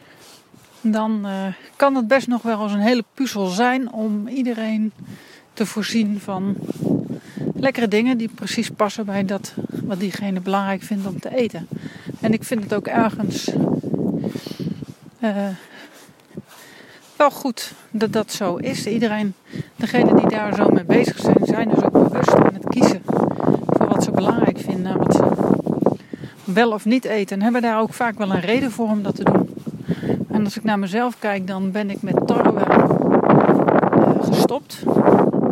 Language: Dutch